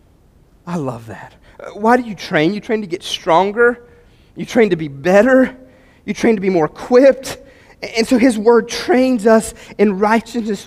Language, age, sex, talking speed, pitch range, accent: English, 30-49, male, 175 wpm, 165-255 Hz, American